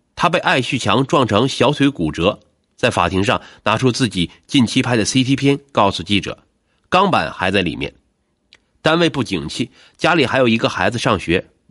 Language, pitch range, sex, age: Chinese, 100-150 Hz, male, 30-49